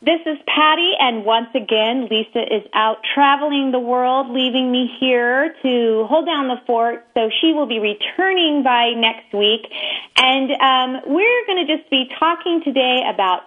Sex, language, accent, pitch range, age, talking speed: female, English, American, 210-275 Hz, 30-49, 170 wpm